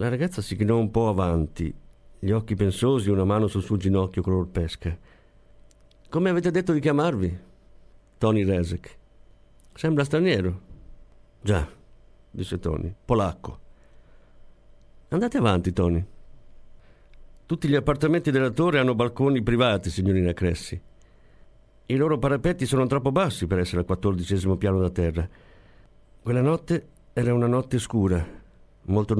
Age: 50-69